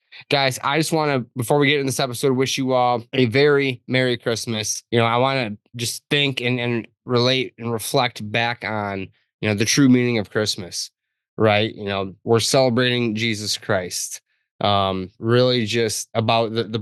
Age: 20-39